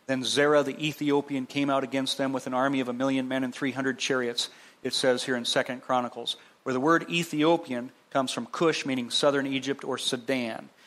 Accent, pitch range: American, 125-145 Hz